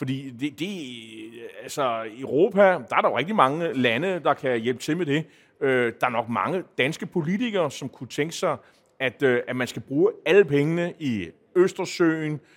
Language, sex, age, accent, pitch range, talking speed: Danish, male, 30-49, native, 125-170 Hz, 185 wpm